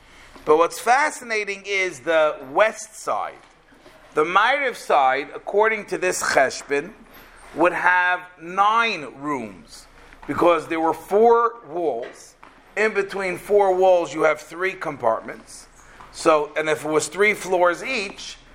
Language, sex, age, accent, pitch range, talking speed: English, male, 40-59, American, 145-185 Hz, 125 wpm